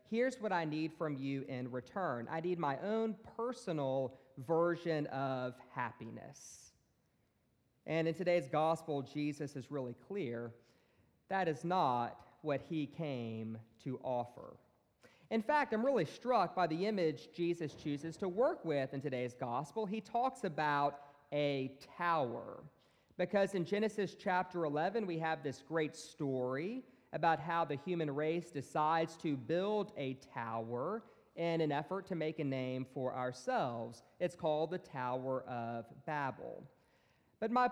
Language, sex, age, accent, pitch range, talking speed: English, male, 40-59, American, 130-175 Hz, 145 wpm